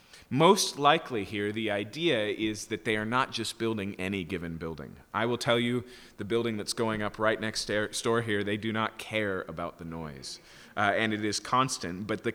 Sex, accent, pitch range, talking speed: male, American, 95-125 Hz, 205 wpm